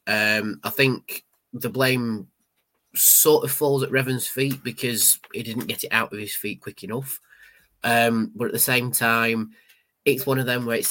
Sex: male